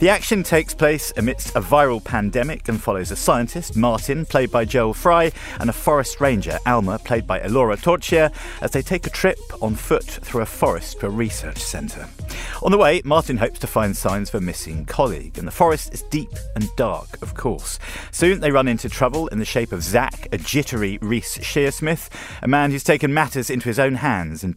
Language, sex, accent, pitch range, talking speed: English, male, British, 105-145 Hz, 210 wpm